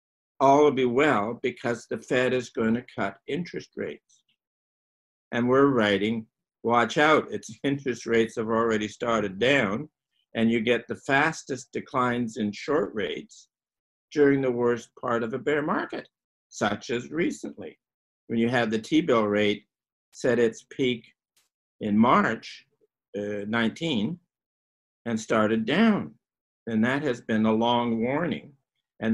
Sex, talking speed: male, 140 wpm